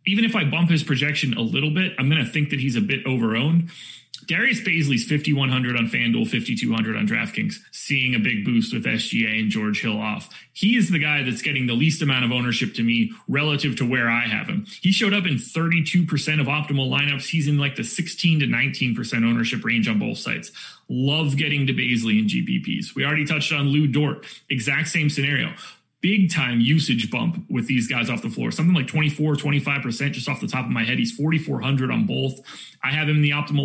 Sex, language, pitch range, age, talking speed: male, English, 130-160 Hz, 30-49, 215 wpm